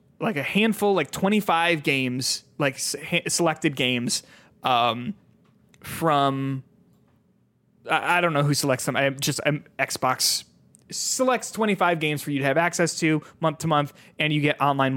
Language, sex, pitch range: English, male, 135-165 Hz